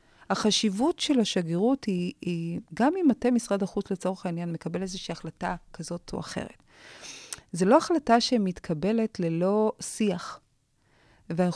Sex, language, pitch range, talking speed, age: female, Hebrew, 170-235 Hz, 130 wpm, 30-49